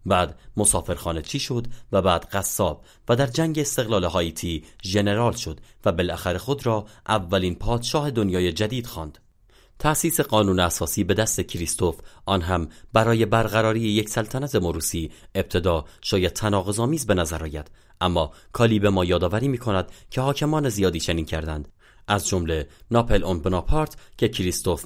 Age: 30-49